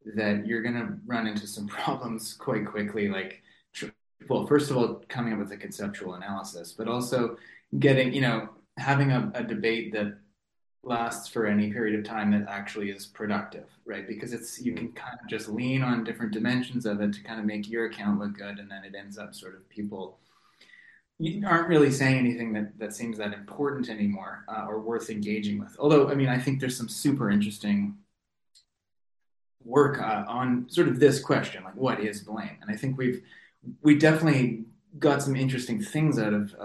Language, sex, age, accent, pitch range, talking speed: English, male, 20-39, American, 105-130 Hz, 195 wpm